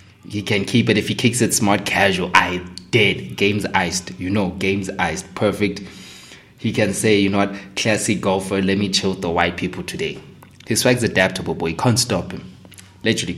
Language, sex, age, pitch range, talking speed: English, male, 20-39, 90-105 Hz, 190 wpm